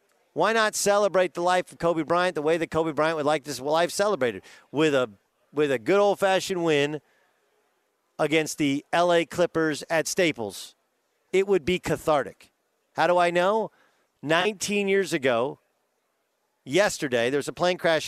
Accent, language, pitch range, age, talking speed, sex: American, English, 155-190 Hz, 50-69, 160 wpm, male